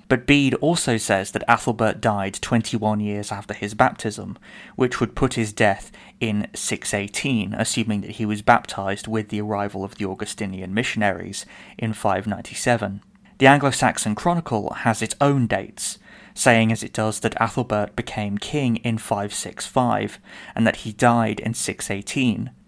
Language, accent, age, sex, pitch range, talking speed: English, British, 20-39, male, 105-120 Hz, 150 wpm